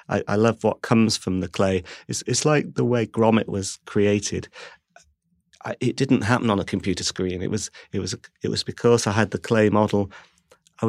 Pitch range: 100-115 Hz